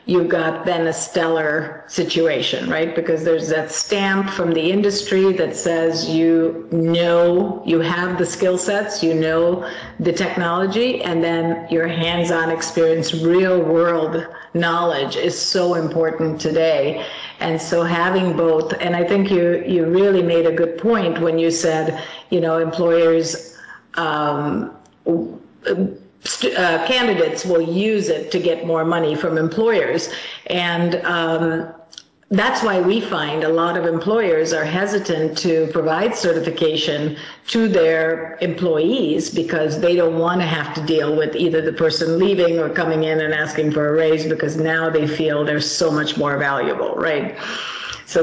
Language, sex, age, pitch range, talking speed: English, female, 50-69, 160-175 Hz, 150 wpm